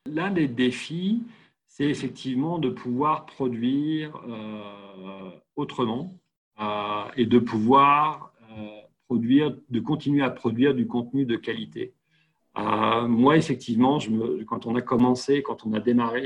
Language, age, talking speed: French, 40-59, 135 wpm